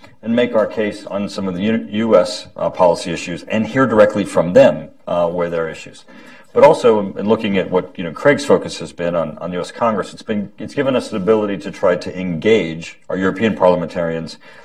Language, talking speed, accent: English, 215 wpm, American